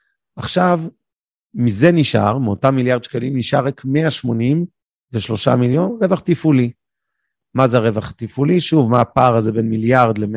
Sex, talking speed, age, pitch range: male, 140 wpm, 40-59, 115-140 Hz